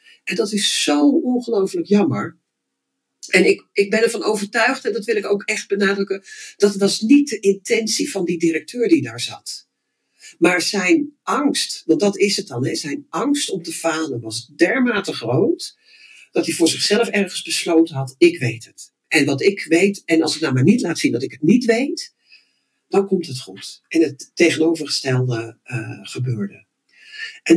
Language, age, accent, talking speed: Dutch, 60-79, Dutch, 180 wpm